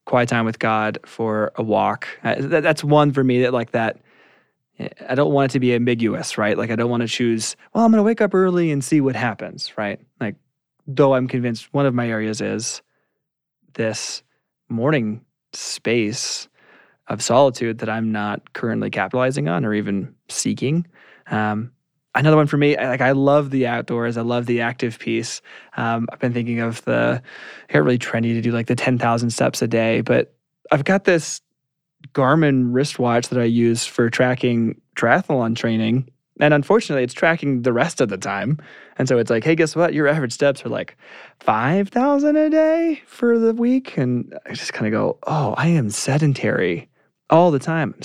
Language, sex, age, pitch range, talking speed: English, male, 20-39, 115-150 Hz, 185 wpm